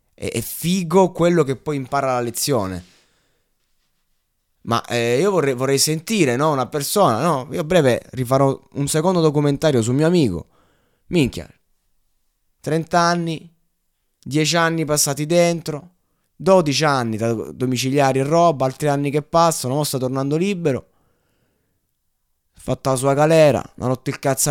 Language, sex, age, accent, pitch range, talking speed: Italian, male, 20-39, native, 125-165 Hz, 145 wpm